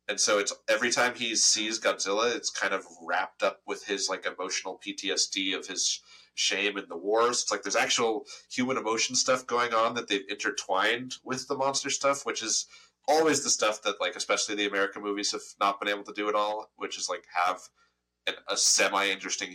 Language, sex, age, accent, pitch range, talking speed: English, male, 30-49, American, 100-130 Hz, 205 wpm